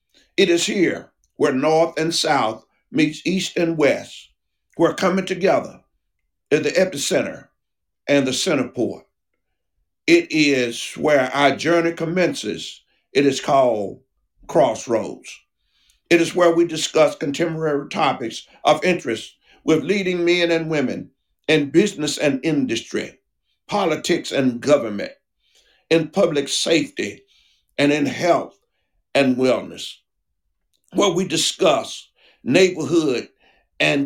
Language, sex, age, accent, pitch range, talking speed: English, male, 50-69, American, 140-175 Hz, 115 wpm